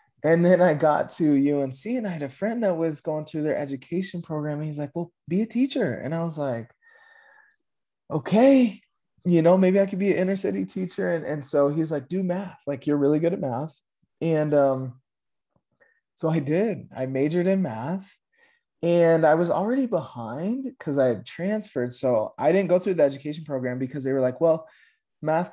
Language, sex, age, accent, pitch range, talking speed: English, male, 20-39, American, 120-170 Hz, 200 wpm